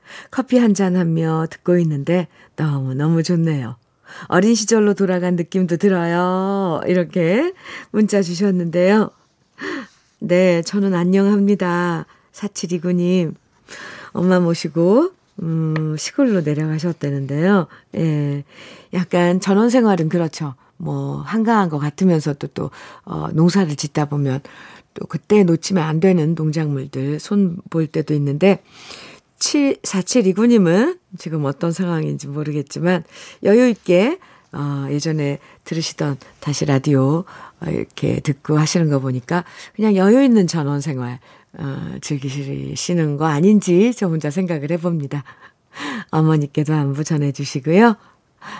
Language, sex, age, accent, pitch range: Korean, female, 50-69, native, 150-190 Hz